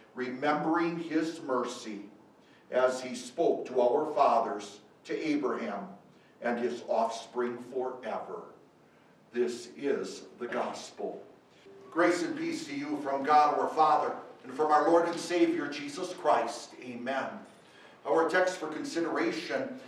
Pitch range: 125-180 Hz